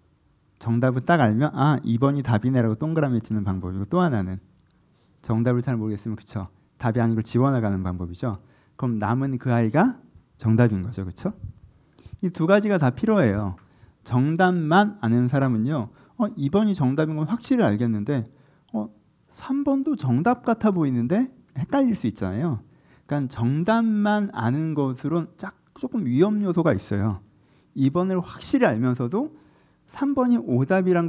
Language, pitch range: Korean, 115-185 Hz